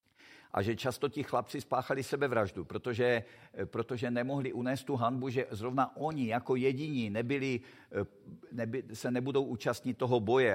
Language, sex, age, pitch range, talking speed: Czech, male, 50-69, 105-135 Hz, 150 wpm